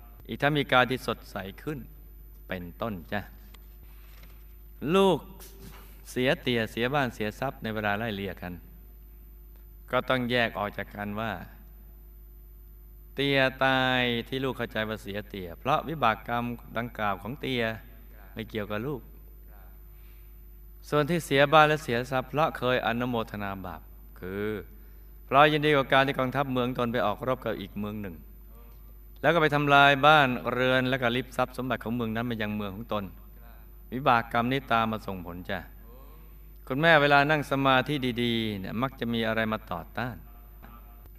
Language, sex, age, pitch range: Thai, male, 20-39, 100-130 Hz